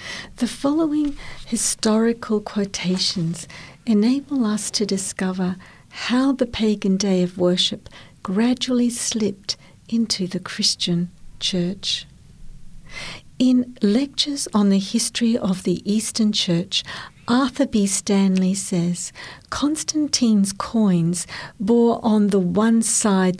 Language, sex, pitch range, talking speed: English, female, 185-235 Hz, 105 wpm